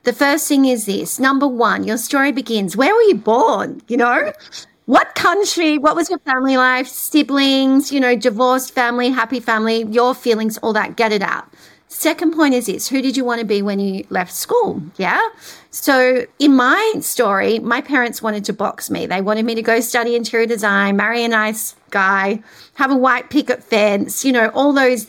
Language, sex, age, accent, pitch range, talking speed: English, female, 40-59, Australian, 215-265 Hz, 200 wpm